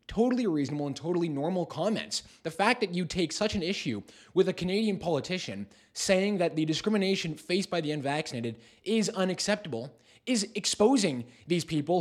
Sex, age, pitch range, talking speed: male, 20-39, 145-195 Hz, 160 wpm